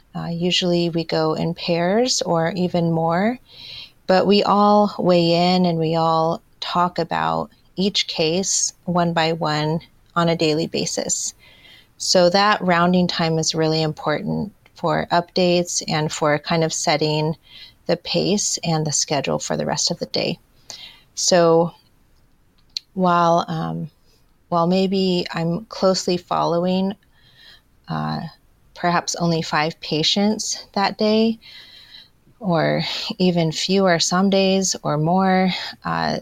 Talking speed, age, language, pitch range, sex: 125 wpm, 30-49, English, 160-185 Hz, female